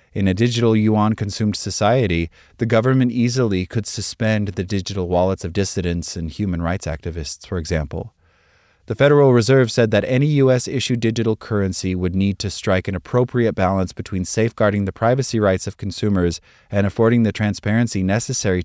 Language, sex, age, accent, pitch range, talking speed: English, male, 30-49, American, 90-115 Hz, 160 wpm